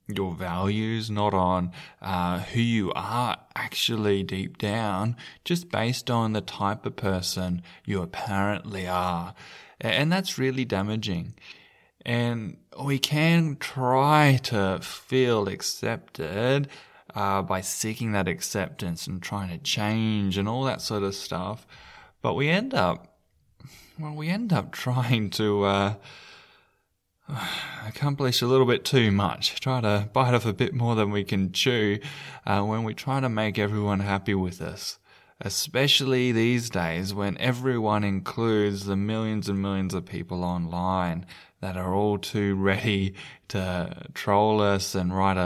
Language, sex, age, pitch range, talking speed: English, male, 10-29, 95-125 Hz, 145 wpm